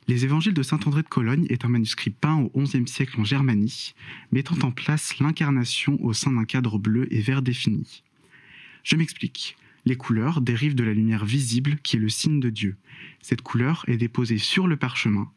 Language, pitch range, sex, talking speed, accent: French, 115-140 Hz, male, 190 wpm, French